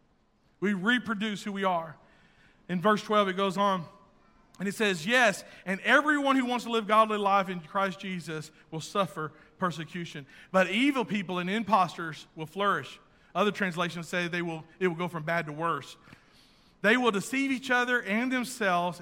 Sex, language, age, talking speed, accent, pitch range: male, English, 40-59, 175 wpm, American, 175-220 Hz